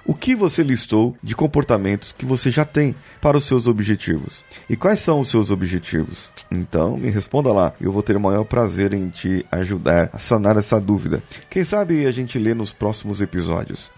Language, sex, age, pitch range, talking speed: Portuguese, male, 30-49, 105-150 Hz, 195 wpm